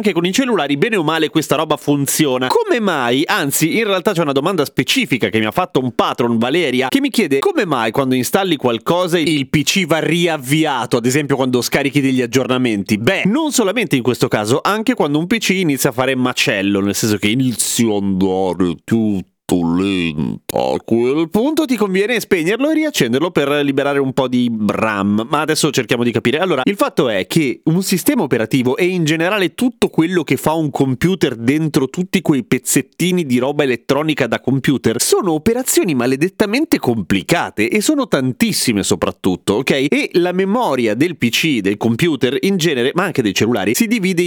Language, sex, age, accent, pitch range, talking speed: Italian, male, 30-49, native, 125-180 Hz, 180 wpm